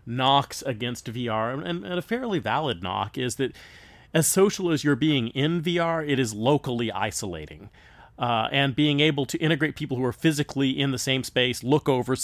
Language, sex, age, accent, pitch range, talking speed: English, male, 30-49, American, 115-140 Hz, 185 wpm